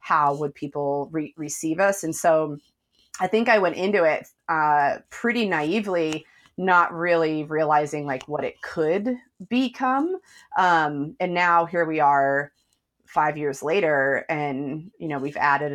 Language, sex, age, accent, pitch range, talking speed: English, female, 30-49, American, 140-175 Hz, 150 wpm